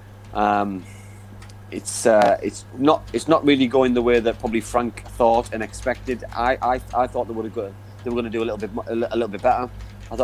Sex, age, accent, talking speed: male, 30-49, British, 235 wpm